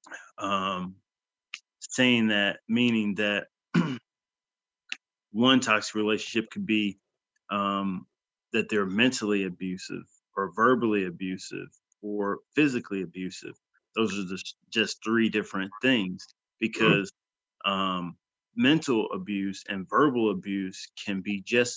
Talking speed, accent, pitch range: 105 wpm, American, 95-110 Hz